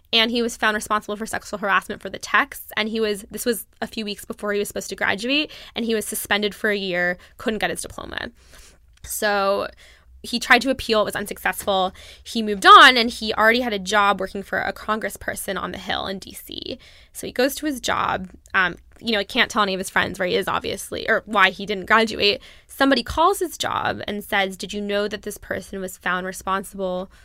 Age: 10-29